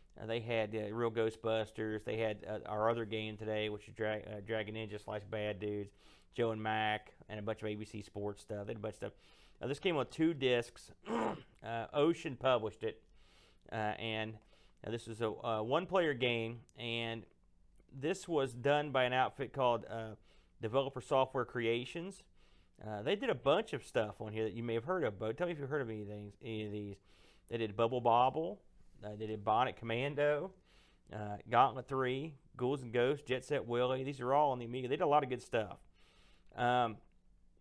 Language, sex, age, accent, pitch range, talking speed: English, male, 40-59, American, 105-135 Hz, 200 wpm